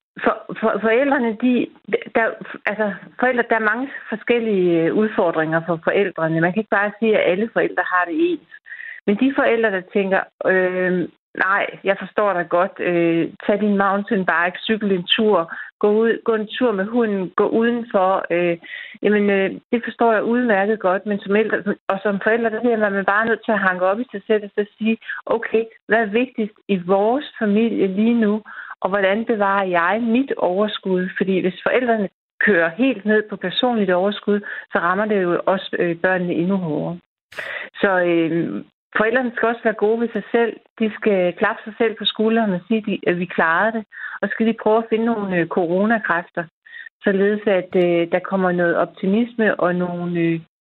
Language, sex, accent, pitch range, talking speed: Danish, female, native, 180-225 Hz, 180 wpm